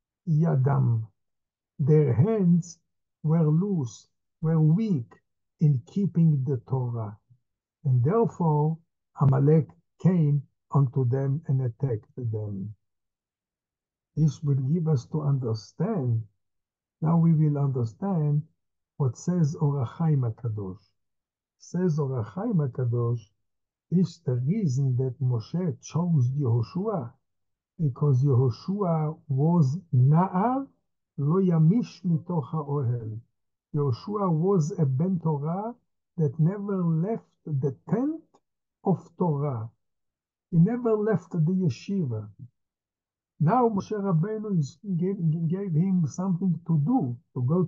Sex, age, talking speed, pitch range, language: male, 60-79, 100 wpm, 120-170 Hz, English